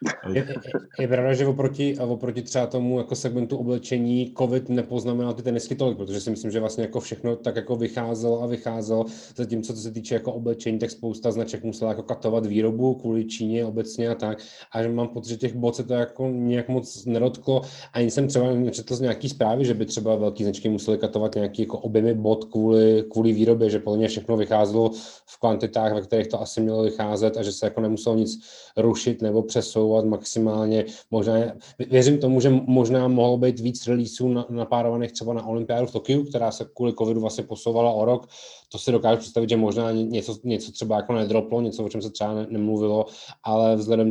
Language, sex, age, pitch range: Czech, male, 30-49, 110-120 Hz